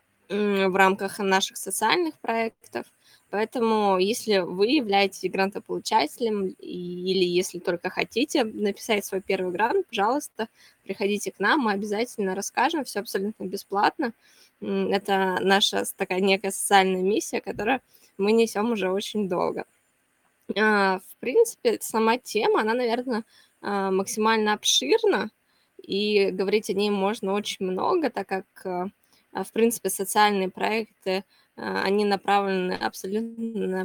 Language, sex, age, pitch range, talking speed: Russian, female, 20-39, 190-225 Hz, 115 wpm